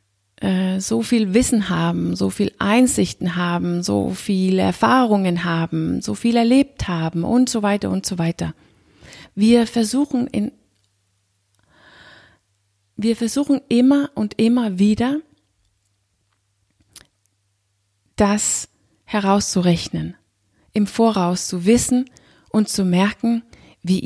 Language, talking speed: German, 95 wpm